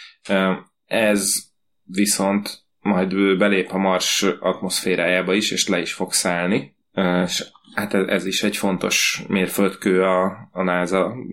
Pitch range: 90-100 Hz